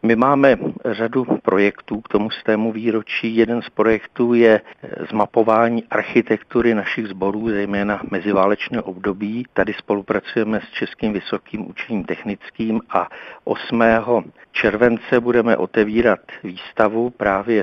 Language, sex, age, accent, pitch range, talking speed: Czech, male, 50-69, native, 100-115 Hz, 110 wpm